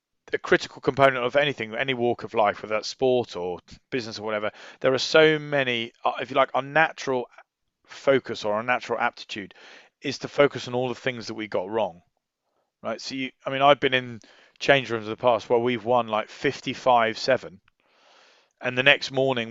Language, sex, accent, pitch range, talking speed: English, male, British, 115-135 Hz, 195 wpm